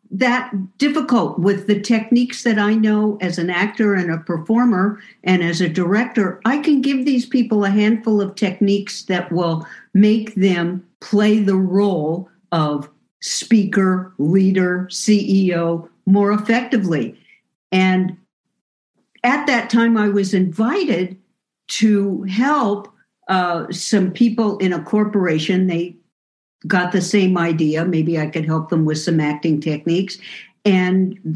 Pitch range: 175-215 Hz